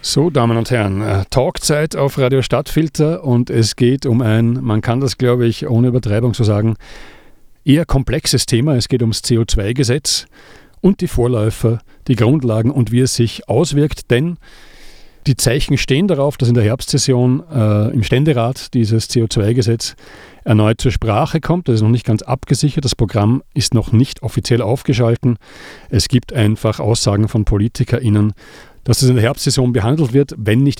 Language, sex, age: English, male, 40-59